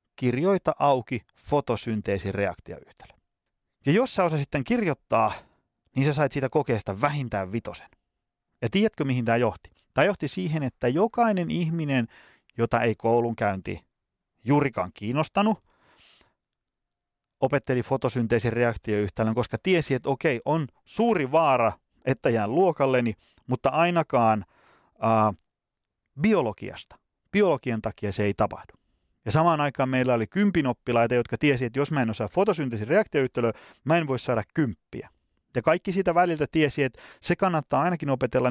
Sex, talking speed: male, 130 wpm